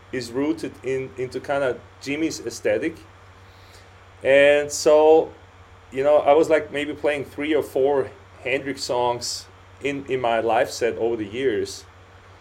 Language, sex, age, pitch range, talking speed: Dutch, male, 30-49, 95-150 Hz, 145 wpm